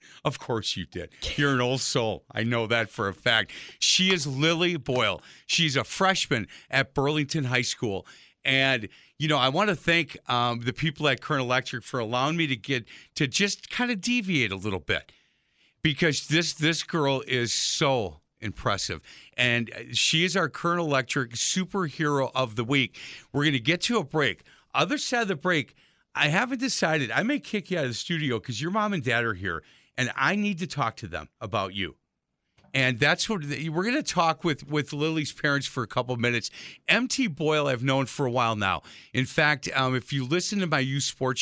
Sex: male